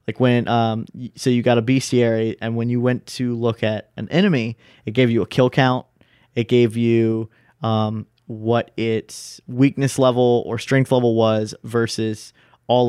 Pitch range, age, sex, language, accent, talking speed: 110-125 Hz, 30-49, male, English, American, 170 wpm